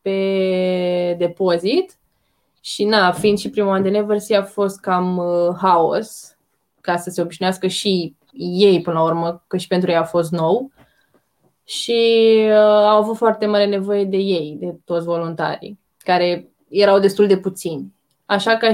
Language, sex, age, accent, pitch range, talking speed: Romanian, female, 20-39, native, 185-220 Hz, 160 wpm